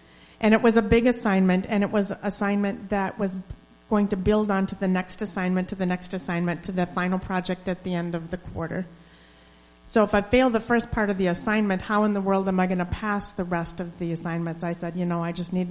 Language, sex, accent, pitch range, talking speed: English, female, American, 175-205 Hz, 250 wpm